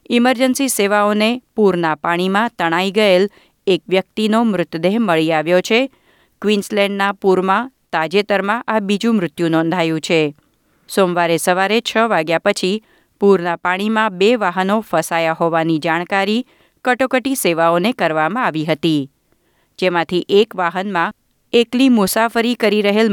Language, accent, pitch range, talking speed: Gujarati, native, 170-220 Hz, 115 wpm